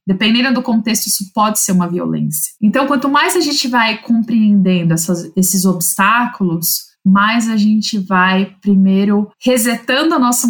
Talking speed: 145 wpm